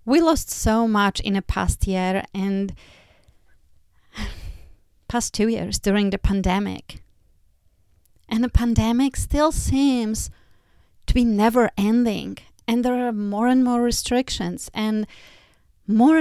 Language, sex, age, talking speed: English, female, 30-49, 120 wpm